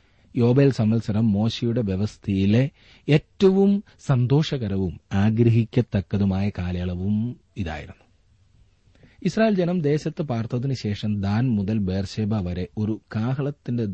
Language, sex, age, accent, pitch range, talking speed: Malayalam, male, 30-49, native, 95-125 Hz, 80 wpm